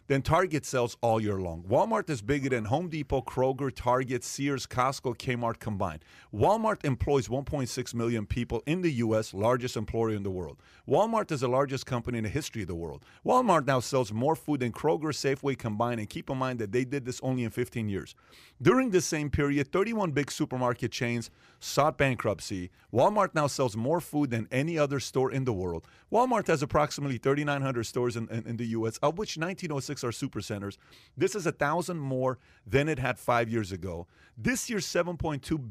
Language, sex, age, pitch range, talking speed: English, male, 40-59, 115-145 Hz, 195 wpm